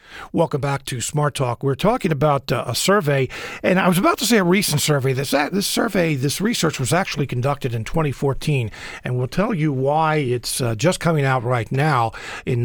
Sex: male